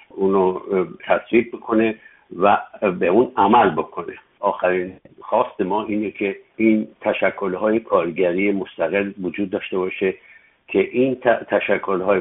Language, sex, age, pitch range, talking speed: Persian, male, 60-79, 95-110 Hz, 120 wpm